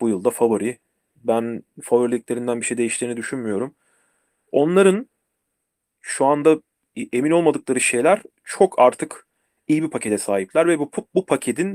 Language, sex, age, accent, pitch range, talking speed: Turkish, male, 40-59, native, 120-150 Hz, 130 wpm